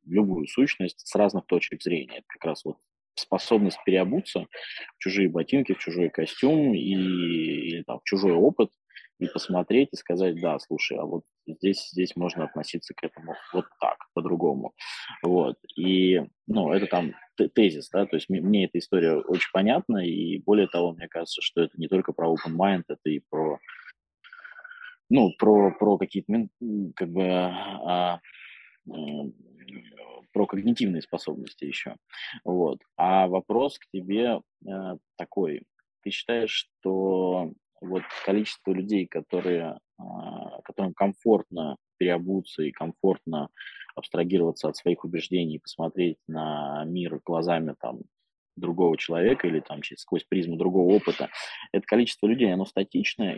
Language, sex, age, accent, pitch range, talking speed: Russian, male, 20-39, native, 85-105 Hz, 140 wpm